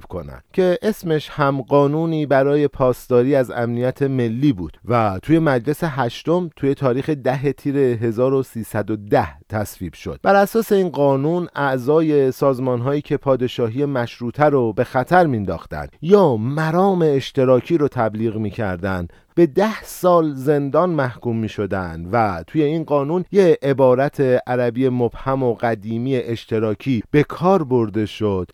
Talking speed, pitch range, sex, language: 130 wpm, 110-140 Hz, male, Persian